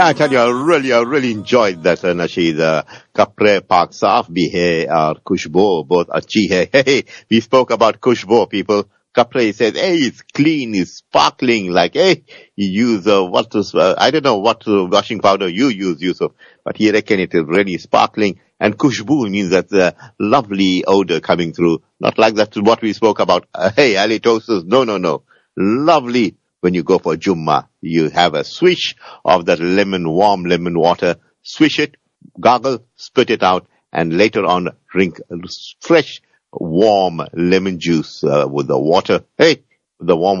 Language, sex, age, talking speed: English, male, 50-69, 175 wpm